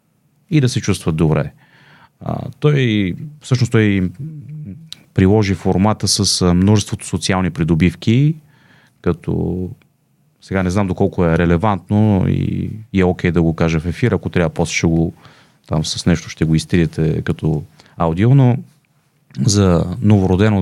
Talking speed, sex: 140 wpm, male